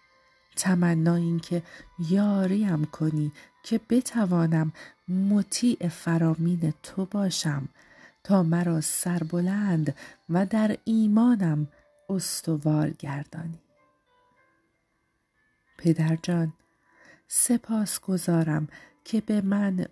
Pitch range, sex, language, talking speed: 165-205 Hz, female, Persian, 75 wpm